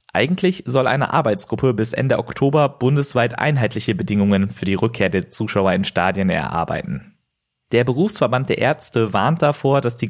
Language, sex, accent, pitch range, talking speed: German, male, German, 110-150 Hz, 155 wpm